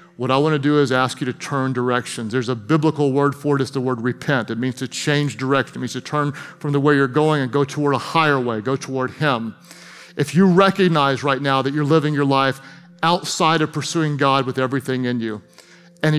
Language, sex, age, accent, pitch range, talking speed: English, male, 40-59, American, 140-175 Hz, 230 wpm